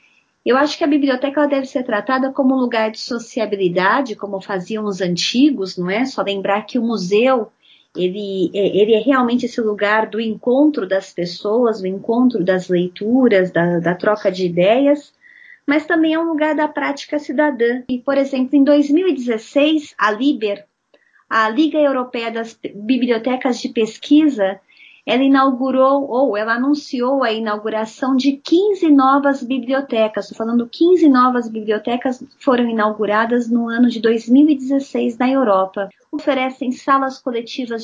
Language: Portuguese